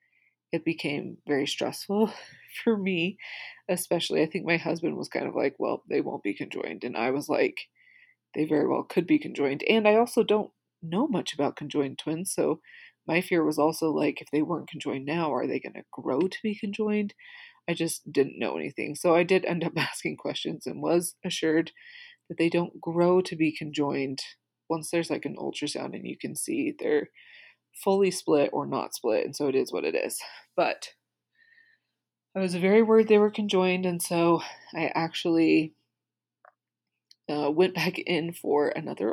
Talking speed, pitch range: 185 wpm, 160-235 Hz